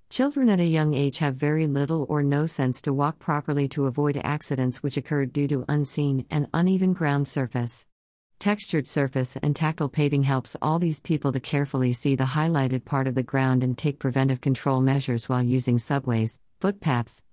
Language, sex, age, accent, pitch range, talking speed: English, female, 50-69, American, 130-155 Hz, 185 wpm